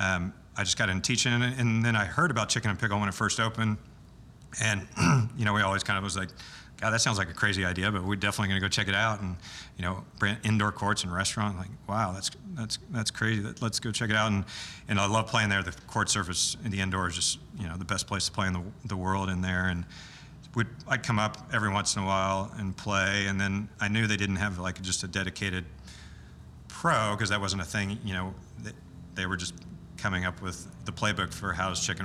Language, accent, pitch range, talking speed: English, American, 95-110 Hz, 250 wpm